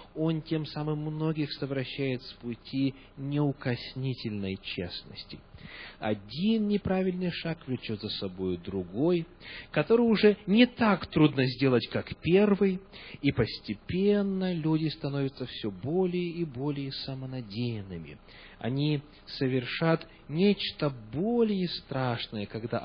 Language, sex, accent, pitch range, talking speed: Russian, male, native, 115-180 Hz, 100 wpm